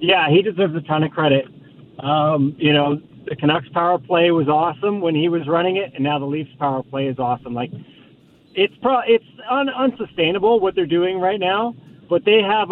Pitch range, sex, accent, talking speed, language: 155-190 Hz, male, American, 205 wpm, English